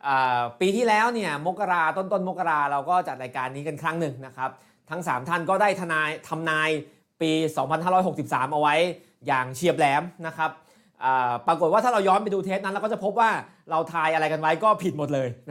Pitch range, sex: 140-185 Hz, male